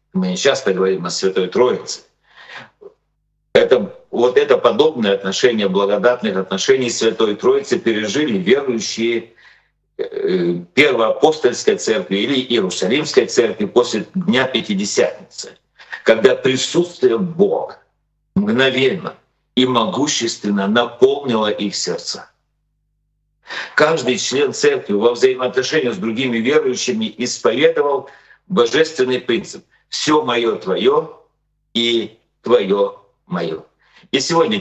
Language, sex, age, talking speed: Russian, male, 50-69, 90 wpm